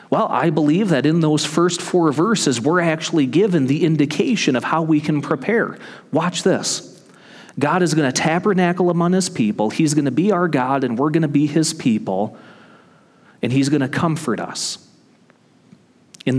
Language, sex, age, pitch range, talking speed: English, male, 40-59, 130-165 Hz, 180 wpm